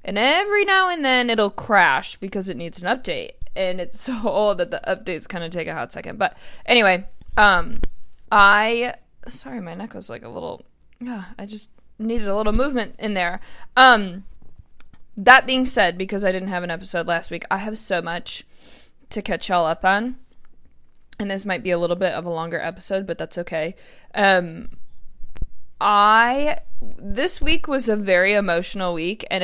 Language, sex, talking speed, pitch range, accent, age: English, female, 185 wpm, 175-215 Hz, American, 20-39